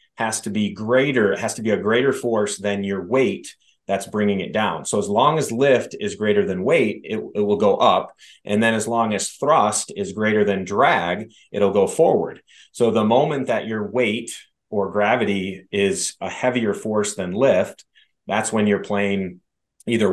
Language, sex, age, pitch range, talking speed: English, male, 30-49, 95-115 Hz, 190 wpm